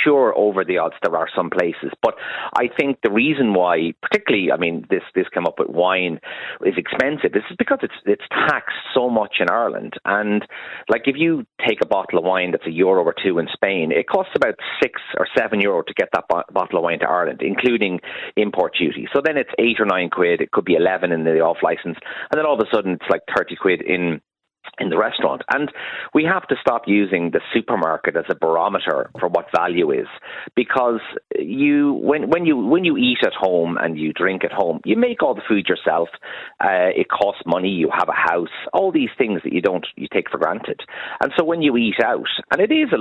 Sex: male